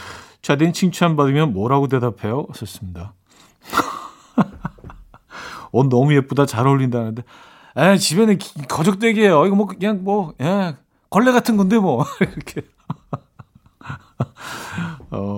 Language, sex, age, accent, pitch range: Korean, male, 40-59, native, 115-165 Hz